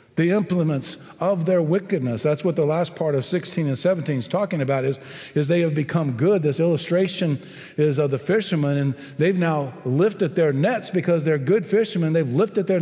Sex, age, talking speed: male, 50-69, 195 wpm